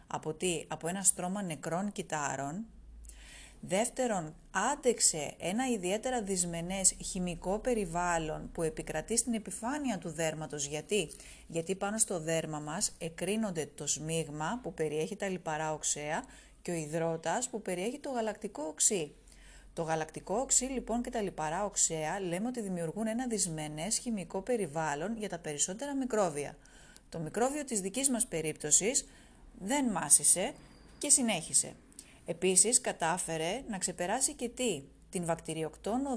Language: Greek